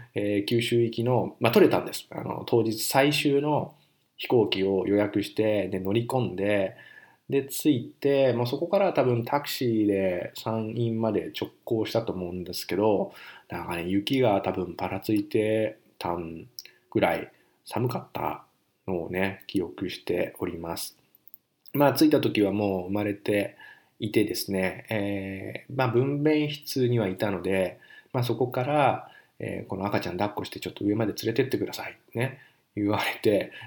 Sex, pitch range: male, 95-130 Hz